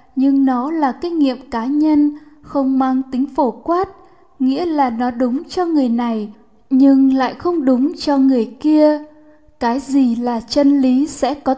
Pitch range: 250-290 Hz